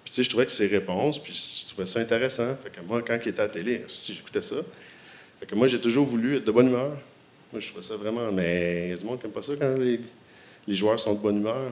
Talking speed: 290 wpm